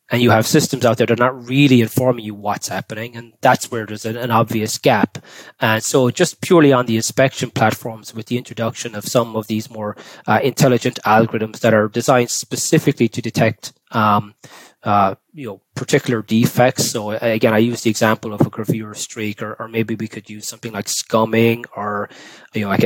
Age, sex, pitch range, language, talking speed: 20-39, male, 110-125 Hz, English, 195 wpm